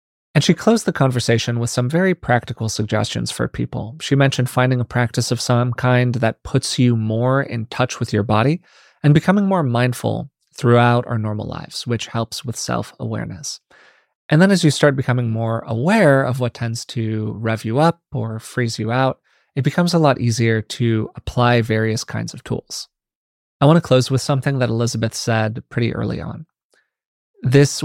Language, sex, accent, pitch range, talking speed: English, male, American, 115-145 Hz, 180 wpm